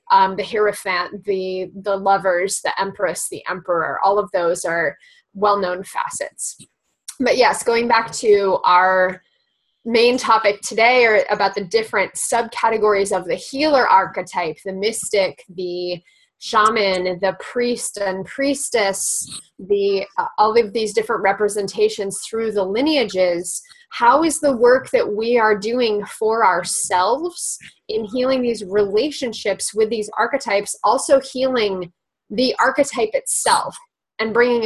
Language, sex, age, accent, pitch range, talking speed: English, female, 20-39, American, 195-260 Hz, 130 wpm